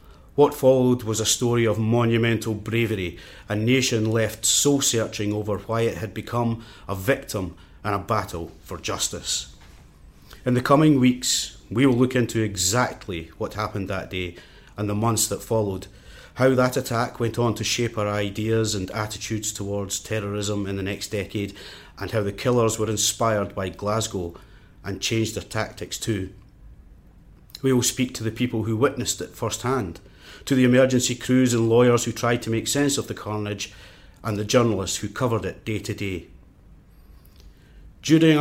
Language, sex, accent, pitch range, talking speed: English, male, British, 100-120 Hz, 165 wpm